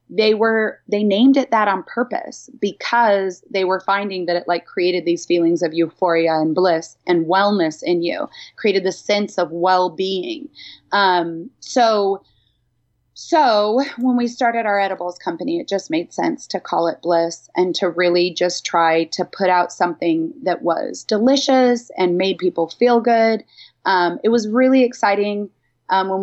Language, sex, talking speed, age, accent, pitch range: English, female, 165 wpm, 30-49, American, 175-230 Hz